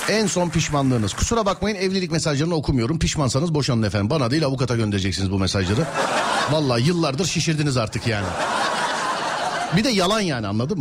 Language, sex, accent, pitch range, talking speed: Turkish, male, native, 125-205 Hz, 150 wpm